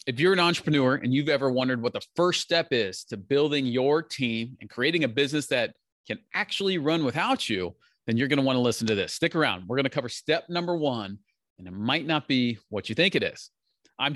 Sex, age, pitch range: male, 40-59, 115-150 Hz